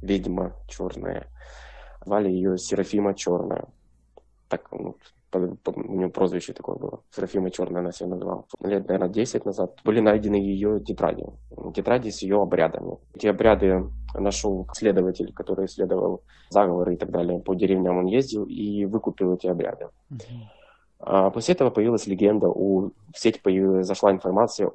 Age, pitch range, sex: 20-39, 90-100 Hz, male